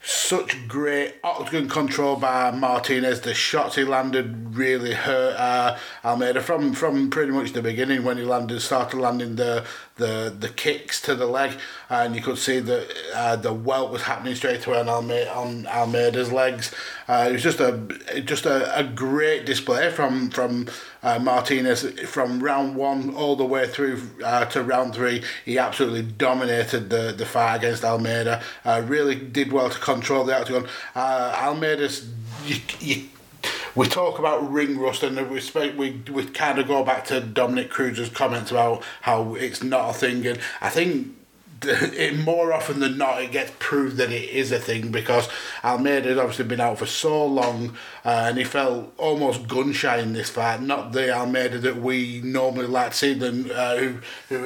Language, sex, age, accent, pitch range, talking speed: English, male, 30-49, British, 120-135 Hz, 180 wpm